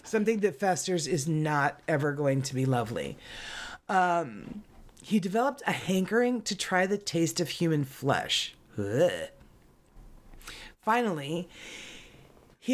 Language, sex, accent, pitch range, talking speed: English, female, American, 155-210 Hz, 115 wpm